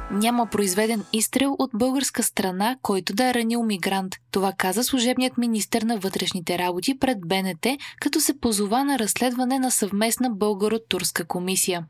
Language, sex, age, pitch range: Bulgarian, female, 20-39, 195-255 Hz